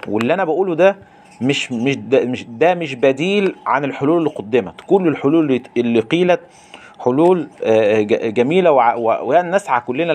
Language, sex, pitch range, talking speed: Arabic, male, 115-145 Hz, 130 wpm